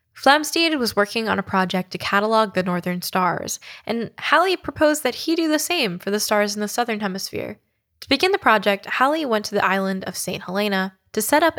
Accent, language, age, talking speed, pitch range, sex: American, English, 10-29, 210 wpm, 195-255 Hz, female